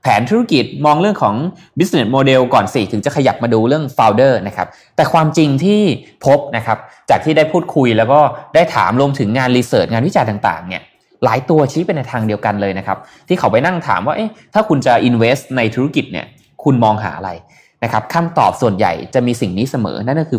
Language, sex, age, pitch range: Thai, male, 20-39, 110-160 Hz